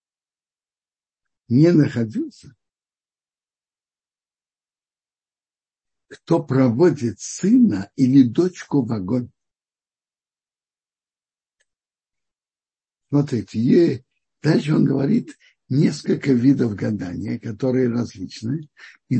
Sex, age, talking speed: male, 60-79, 65 wpm